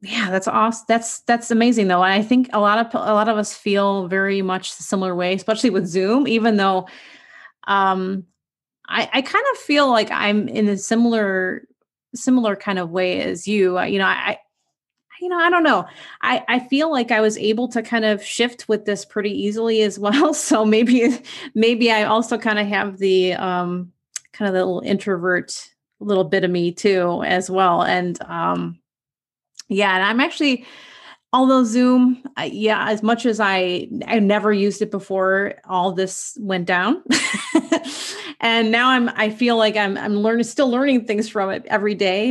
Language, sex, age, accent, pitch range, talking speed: English, female, 30-49, American, 190-235 Hz, 185 wpm